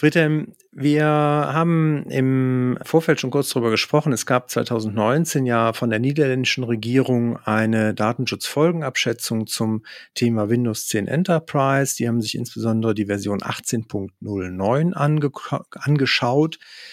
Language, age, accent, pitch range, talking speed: German, 40-59, German, 110-135 Hz, 115 wpm